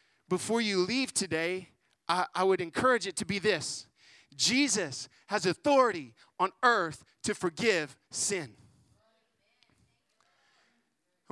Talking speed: 110 wpm